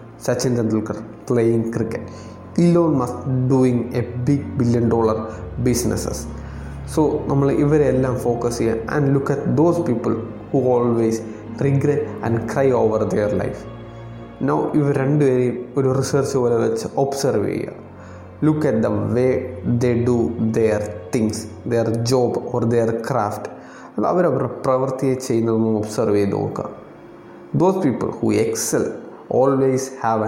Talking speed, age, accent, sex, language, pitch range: 130 wpm, 20-39, native, male, Malayalam, 110-135 Hz